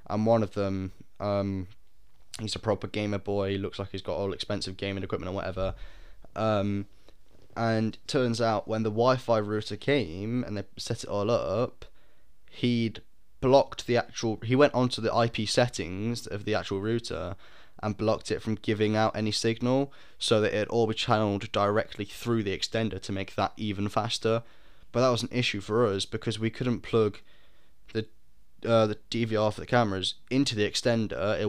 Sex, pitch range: male, 105-120 Hz